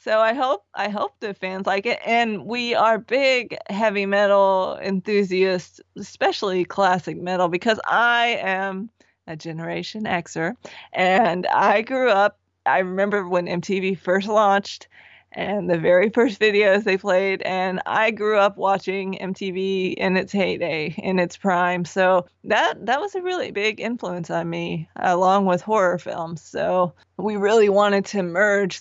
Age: 20-39